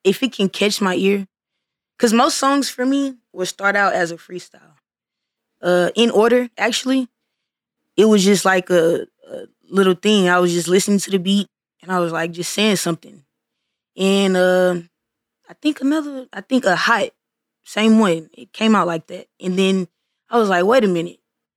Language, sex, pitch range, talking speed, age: English, female, 170-200 Hz, 185 wpm, 20-39